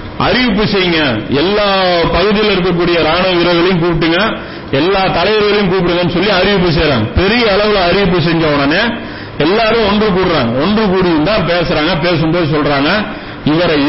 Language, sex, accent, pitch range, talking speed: Tamil, male, native, 160-195 Hz, 125 wpm